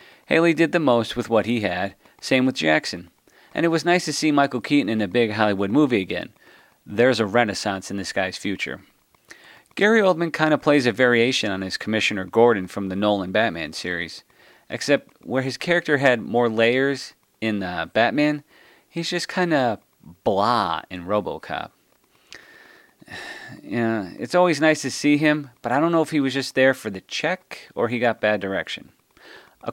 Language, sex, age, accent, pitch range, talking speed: English, male, 30-49, American, 105-145 Hz, 180 wpm